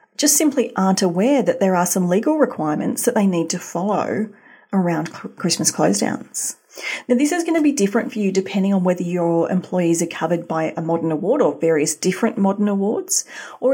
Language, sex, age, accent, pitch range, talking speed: English, female, 40-59, Australian, 180-245 Hz, 195 wpm